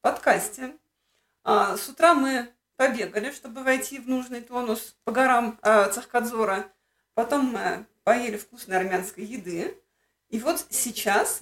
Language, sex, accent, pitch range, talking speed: Russian, female, native, 225-285 Hz, 115 wpm